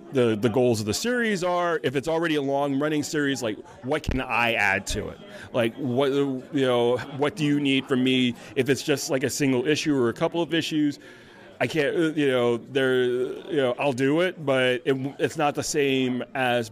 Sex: male